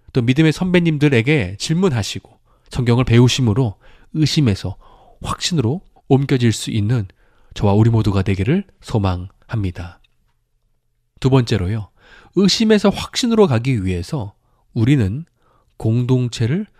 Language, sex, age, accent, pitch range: Korean, male, 20-39, native, 110-155 Hz